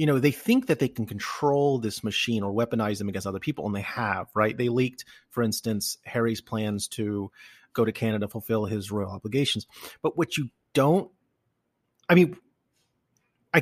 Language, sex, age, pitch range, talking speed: English, male, 30-49, 110-130 Hz, 185 wpm